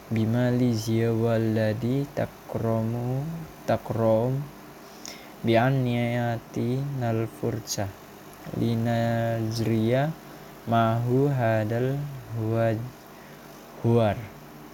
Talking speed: 50 wpm